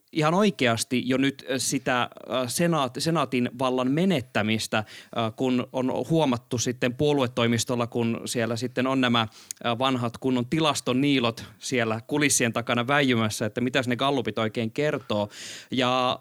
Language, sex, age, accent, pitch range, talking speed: Finnish, male, 20-39, native, 120-145 Hz, 120 wpm